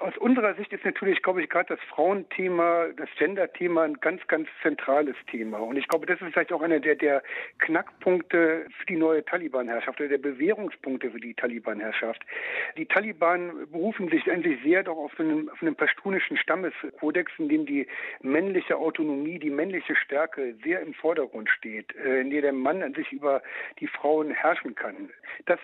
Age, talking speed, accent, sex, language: 60-79, 170 wpm, German, male, German